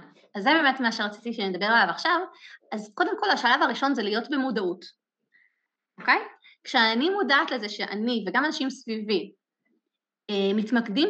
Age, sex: 20-39, female